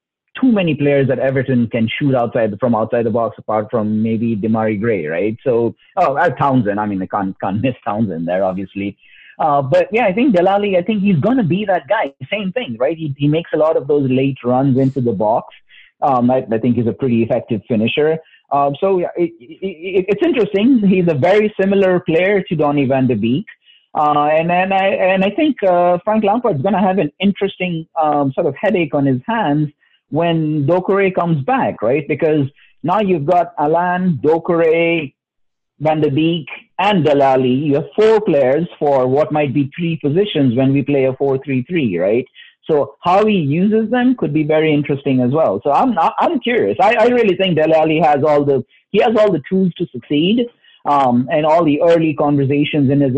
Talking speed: 205 wpm